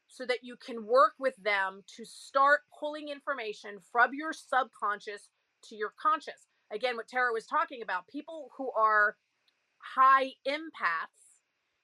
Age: 40-59